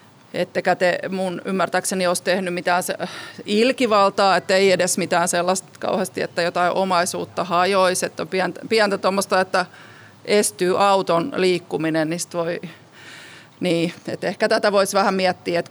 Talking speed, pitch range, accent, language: 140 wpm, 175-215 Hz, native, Finnish